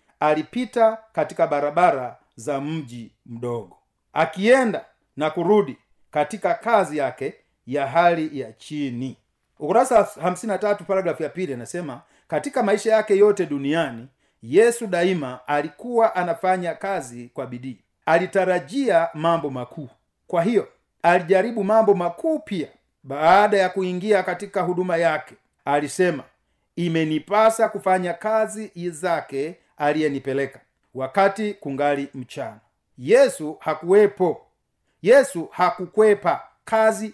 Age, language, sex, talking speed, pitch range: 40-59, Swahili, male, 105 wpm, 150-205 Hz